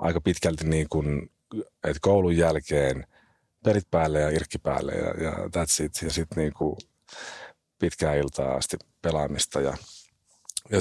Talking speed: 140 wpm